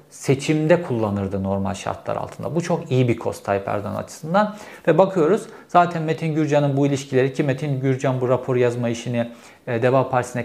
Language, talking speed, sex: Turkish, 170 wpm, male